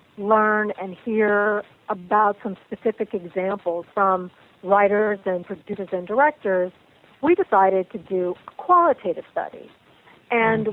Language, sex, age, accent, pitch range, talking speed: English, female, 50-69, American, 195-230 Hz, 115 wpm